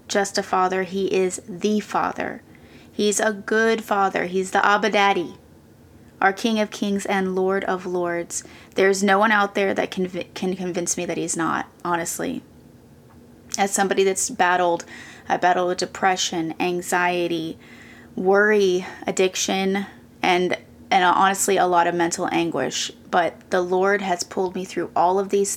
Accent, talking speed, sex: American, 160 wpm, female